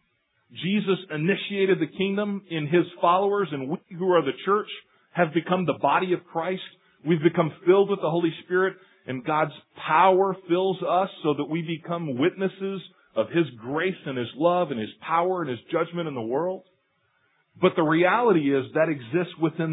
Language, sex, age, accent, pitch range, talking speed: English, male, 40-59, American, 130-180 Hz, 175 wpm